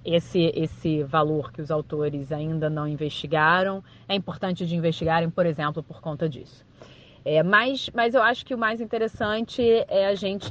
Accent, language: Brazilian, Portuguese